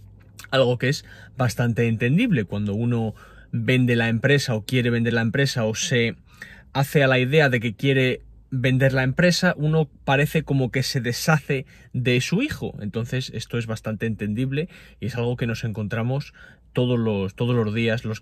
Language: Spanish